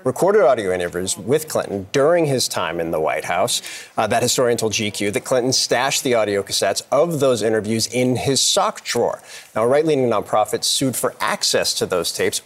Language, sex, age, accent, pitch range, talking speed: English, male, 40-59, American, 110-145 Hz, 195 wpm